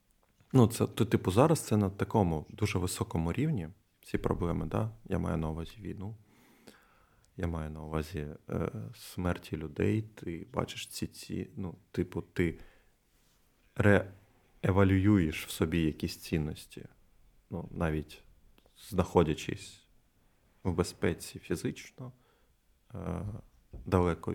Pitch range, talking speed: 90-115 Hz, 115 wpm